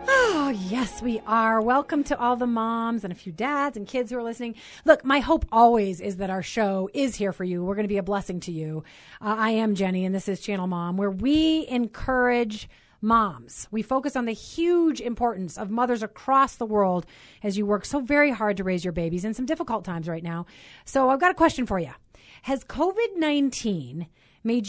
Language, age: English, 30-49